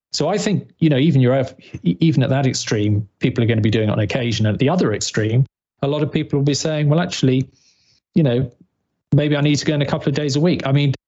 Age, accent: 40-59, British